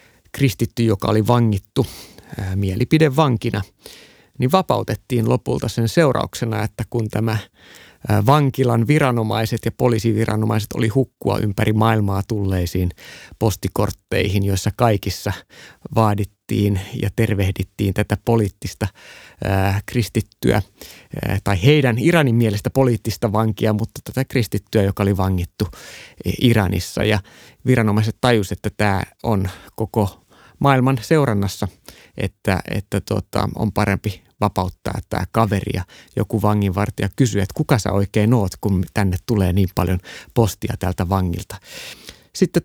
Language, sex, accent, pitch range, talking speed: Finnish, male, native, 100-120 Hz, 110 wpm